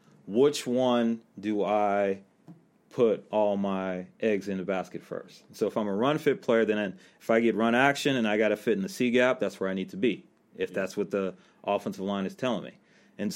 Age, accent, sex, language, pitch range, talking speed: 30-49, American, male, English, 100-120 Hz, 220 wpm